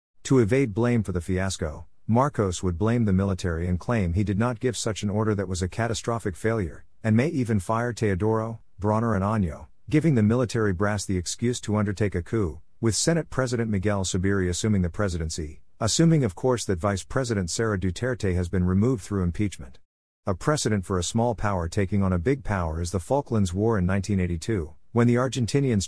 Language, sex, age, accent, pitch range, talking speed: English, male, 50-69, American, 90-115 Hz, 195 wpm